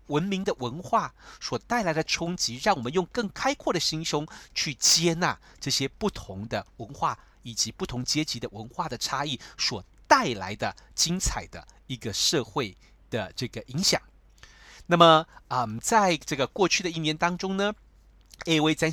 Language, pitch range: Chinese, 120-185 Hz